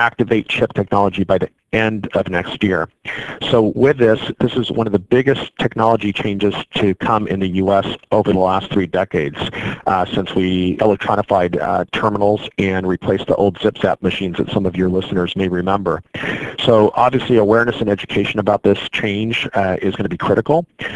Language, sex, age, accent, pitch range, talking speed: English, male, 40-59, American, 100-115 Hz, 180 wpm